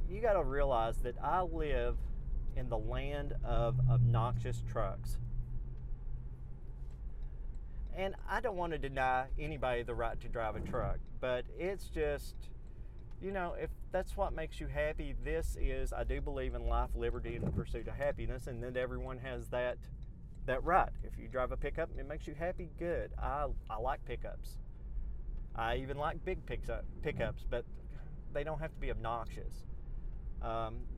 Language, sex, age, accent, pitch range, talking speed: English, male, 40-59, American, 120-145 Hz, 165 wpm